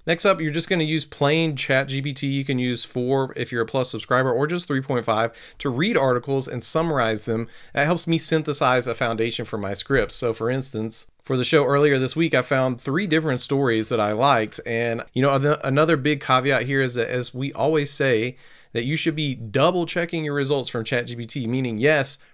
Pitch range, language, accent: 115-150 Hz, English, American